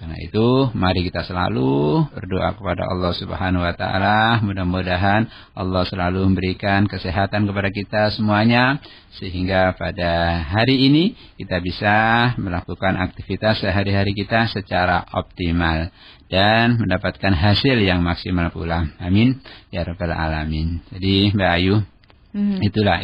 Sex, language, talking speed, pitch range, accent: male, Indonesian, 110 wpm, 90-115 Hz, native